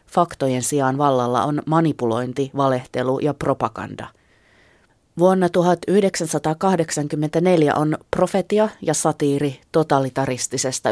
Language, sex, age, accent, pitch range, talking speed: Finnish, female, 30-49, native, 130-160 Hz, 80 wpm